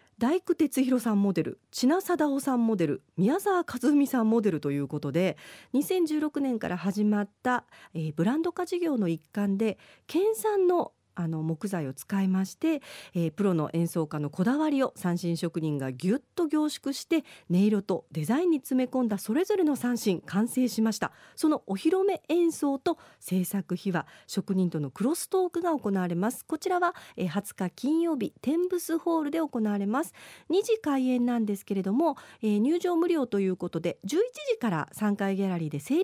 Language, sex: Japanese, female